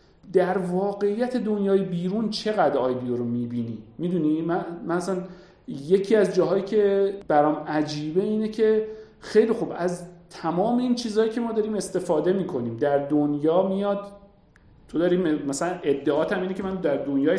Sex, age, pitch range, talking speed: male, 50-69, 140-210 Hz, 145 wpm